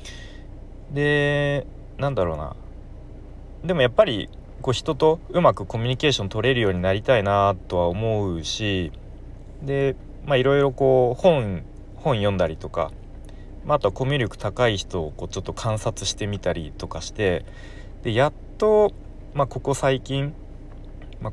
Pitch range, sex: 95-130 Hz, male